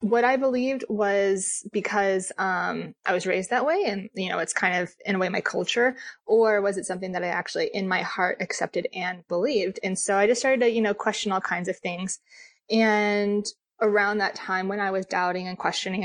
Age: 20-39